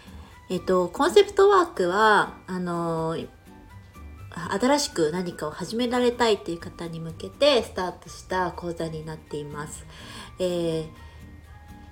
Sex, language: female, Japanese